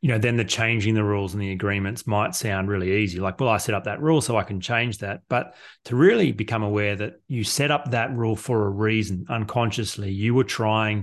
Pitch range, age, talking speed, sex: 100-115 Hz, 30-49, 240 wpm, male